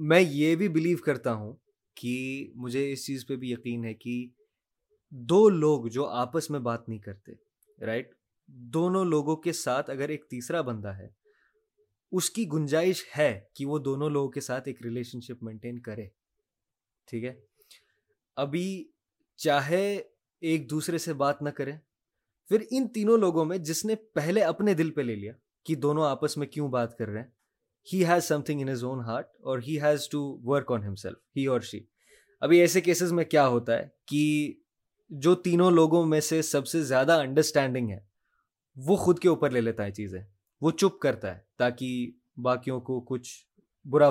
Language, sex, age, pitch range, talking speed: Urdu, male, 20-39, 120-165 Hz, 175 wpm